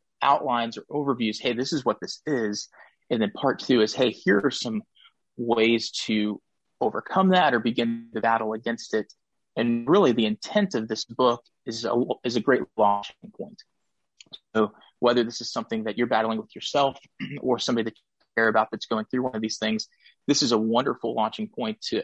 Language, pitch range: English, 110-140 Hz